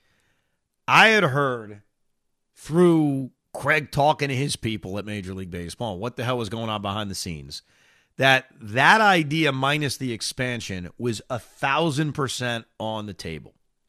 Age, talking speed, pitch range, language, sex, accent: 40-59, 150 wpm, 120-175 Hz, English, male, American